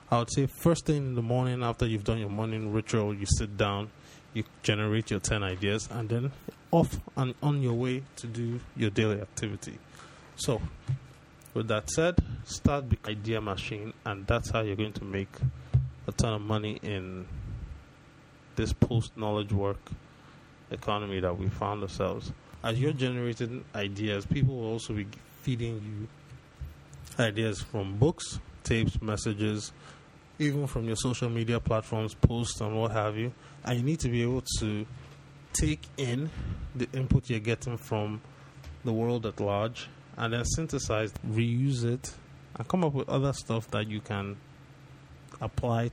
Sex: male